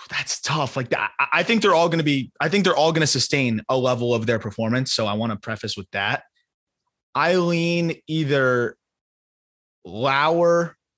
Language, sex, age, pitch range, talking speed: English, male, 20-39, 120-145 Hz, 185 wpm